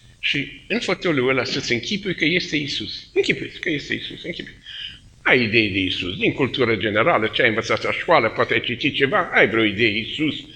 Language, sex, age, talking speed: Romanian, male, 50-69, 195 wpm